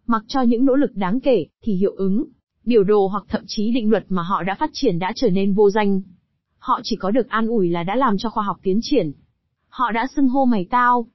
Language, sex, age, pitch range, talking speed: Vietnamese, female, 20-39, 195-255 Hz, 255 wpm